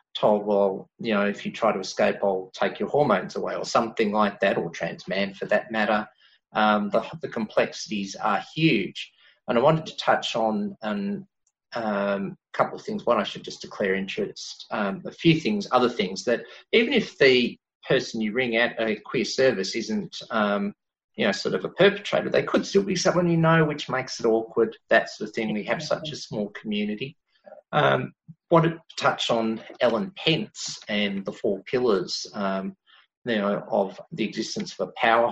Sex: male